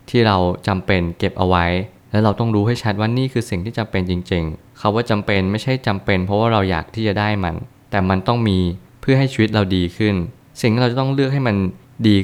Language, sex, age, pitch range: Thai, male, 20-39, 95-115 Hz